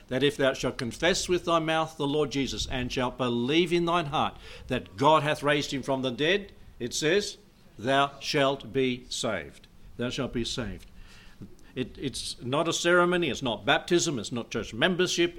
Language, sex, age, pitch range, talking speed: English, male, 60-79, 120-155 Hz, 185 wpm